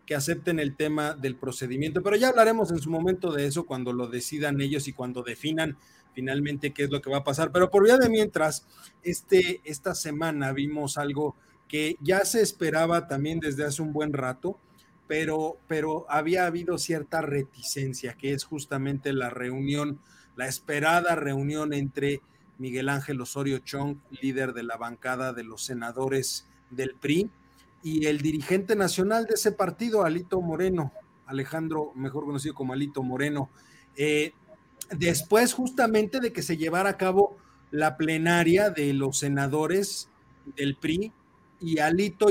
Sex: male